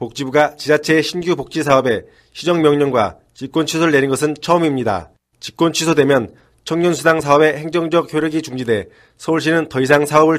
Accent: native